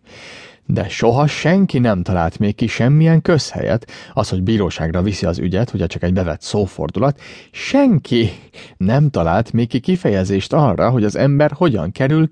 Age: 30-49